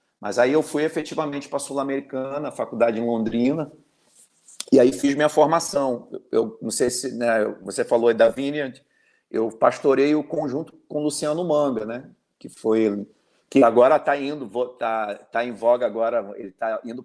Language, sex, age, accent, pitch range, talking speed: Portuguese, male, 50-69, Brazilian, 120-155 Hz, 175 wpm